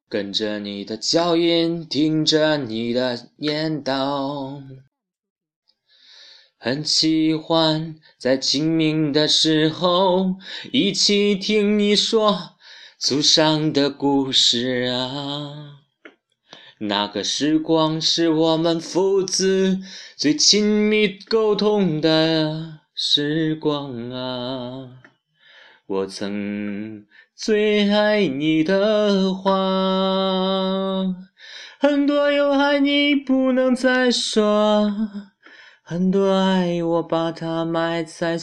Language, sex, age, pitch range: Chinese, male, 30-49, 140-190 Hz